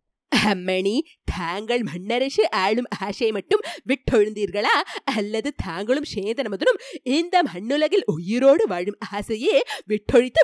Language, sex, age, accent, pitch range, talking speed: Tamil, female, 30-49, native, 205-300 Hz, 90 wpm